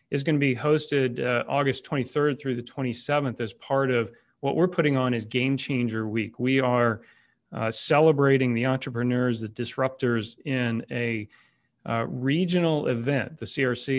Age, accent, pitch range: 30-49, American, 120-145 Hz